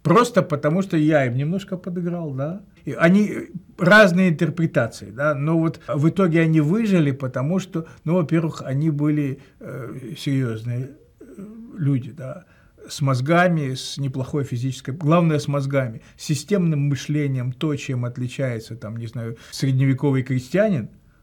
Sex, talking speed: male, 135 wpm